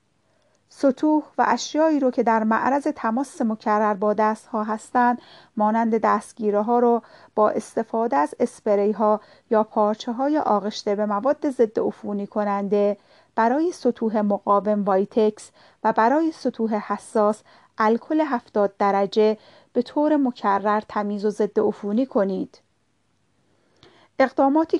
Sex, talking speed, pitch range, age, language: female, 125 wpm, 210-245 Hz, 40-59, Persian